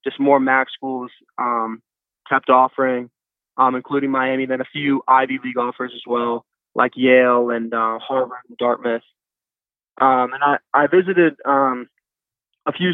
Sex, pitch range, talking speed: male, 125-135 Hz, 160 wpm